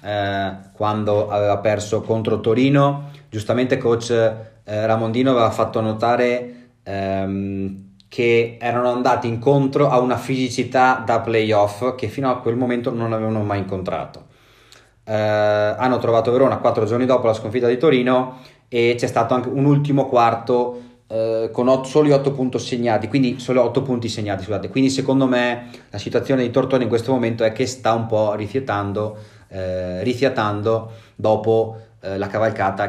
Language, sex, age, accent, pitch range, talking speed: Italian, male, 30-49, native, 105-130 Hz, 155 wpm